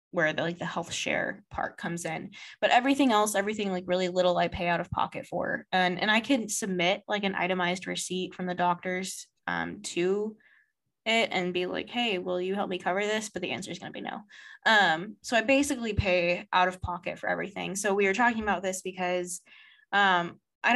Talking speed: 215 wpm